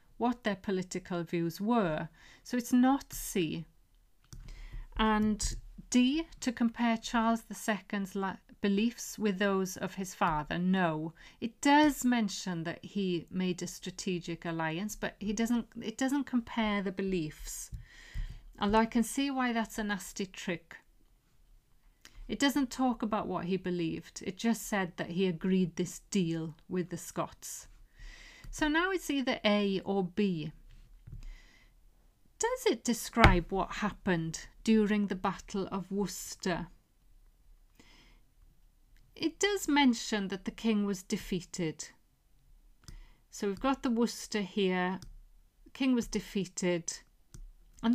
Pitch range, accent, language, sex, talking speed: 180-235 Hz, British, English, female, 130 wpm